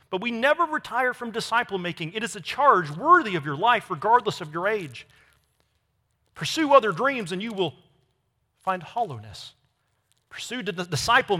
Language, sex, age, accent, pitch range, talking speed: English, male, 40-59, American, 140-230 Hz, 155 wpm